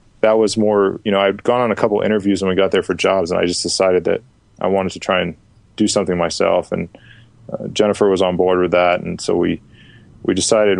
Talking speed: 245 wpm